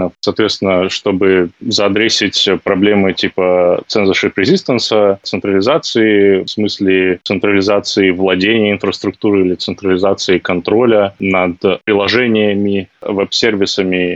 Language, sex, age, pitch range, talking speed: Russian, male, 20-39, 95-110 Hz, 80 wpm